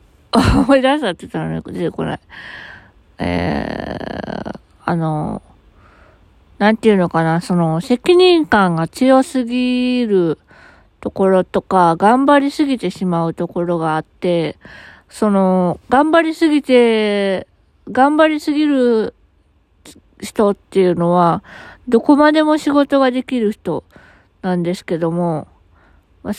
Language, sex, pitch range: Japanese, female, 175-260 Hz